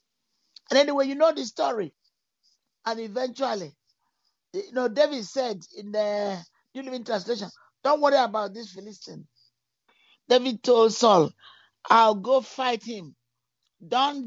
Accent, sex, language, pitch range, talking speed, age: Nigerian, male, English, 200-260 Hz, 125 wpm, 50-69